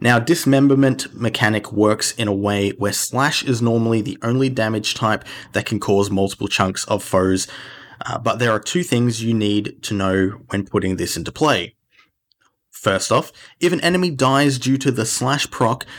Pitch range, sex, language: 105-135 Hz, male, English